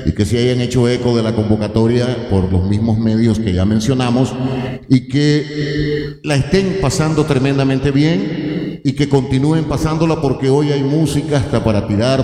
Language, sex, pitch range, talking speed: Spanish, male, 110-140 Hz, 165 wpm